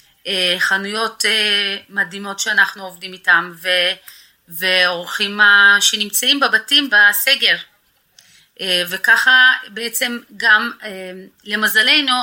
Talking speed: 90 wpm